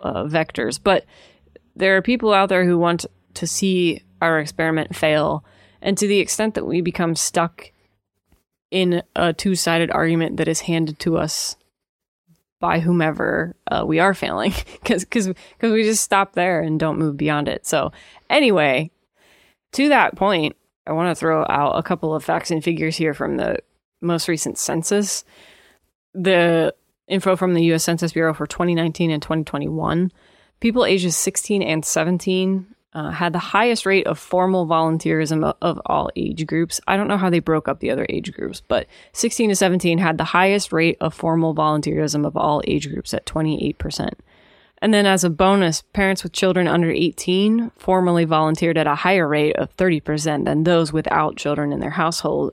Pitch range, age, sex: 160-185 Hz, 20-39, female